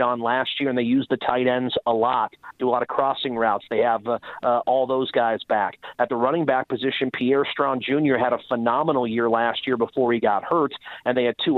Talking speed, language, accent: 245 wpm, English, American